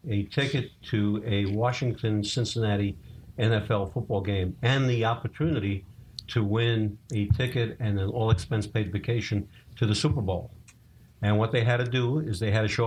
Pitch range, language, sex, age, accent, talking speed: 100-115 Hz, English, male, 50-69, American, 160 wpm